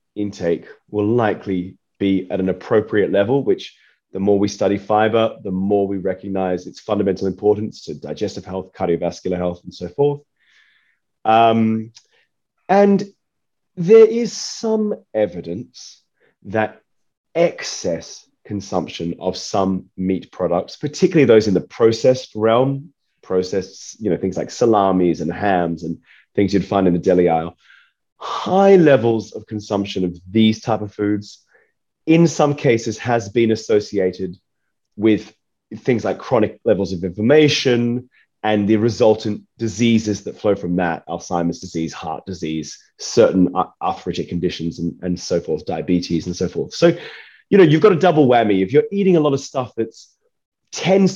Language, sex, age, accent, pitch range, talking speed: English, male, 30-49, British, 95-130 Hz, 150 wpm